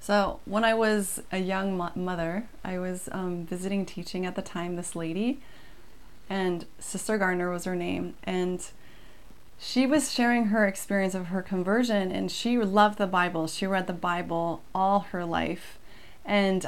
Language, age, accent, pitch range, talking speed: English, 30-49, American, 185-245 Hz, 160 wpm